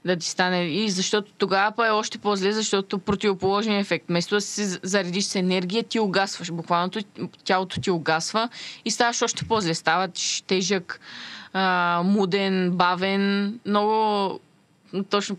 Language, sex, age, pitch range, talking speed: Bulgarian, female, 20-39, 180-215 Hz, 140 wpm